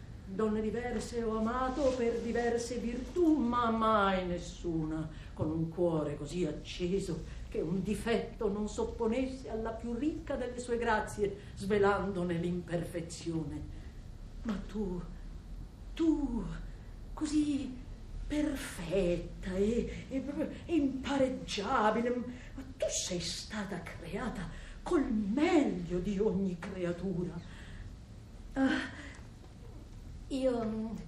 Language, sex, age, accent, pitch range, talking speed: Italian, female, 50-69, native, 195-255 Hz, 95 wpm